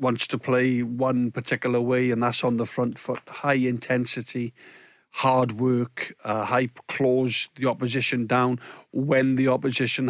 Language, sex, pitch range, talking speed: English, male, 125-135 Hz, 150 wpm